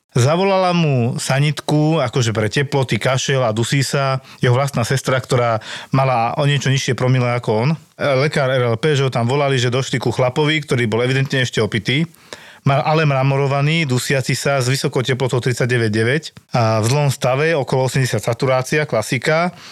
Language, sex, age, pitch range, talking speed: Slovak, male, 40-59, 120-140 Hz, 160 wpm